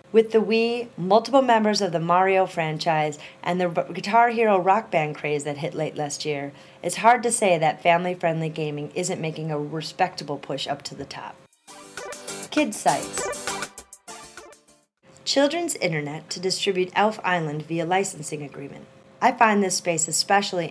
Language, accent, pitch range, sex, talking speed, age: English, American, 160-205 Hz, female, 155 wpm, 30-49